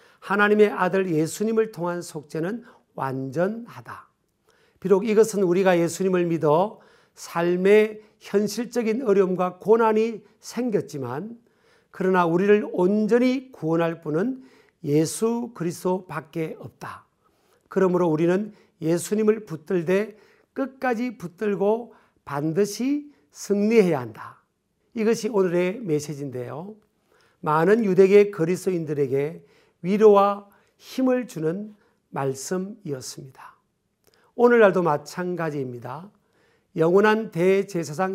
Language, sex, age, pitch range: Korean, male, 50-69, 165-215 Hz